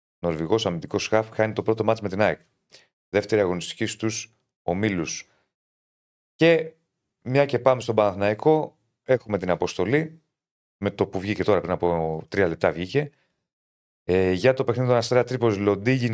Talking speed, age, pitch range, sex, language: 155 wpm, 30-49, 95-130 Hz, male, Greek